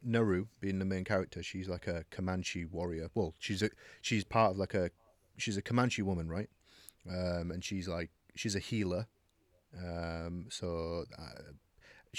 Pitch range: 85-100 Hz